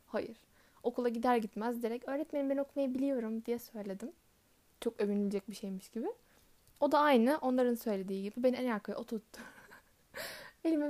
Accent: native